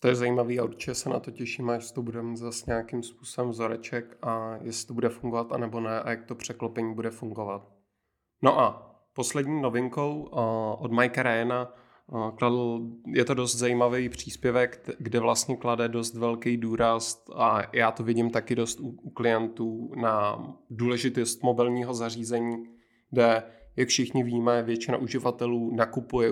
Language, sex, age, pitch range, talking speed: Czech, male, 20-39, 115-120 Hz, 155 wpm